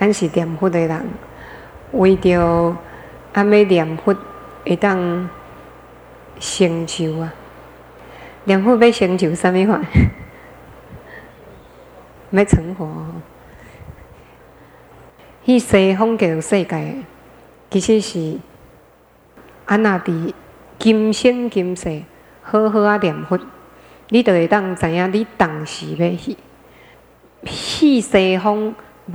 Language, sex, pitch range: Chinese, female, 170-210 Hz